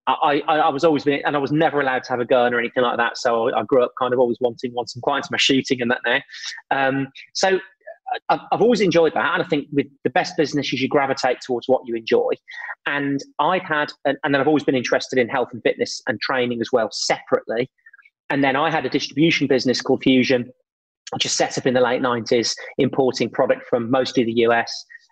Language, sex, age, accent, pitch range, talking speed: English, male, 30-49, British, 125-155 Hz, 230 wpm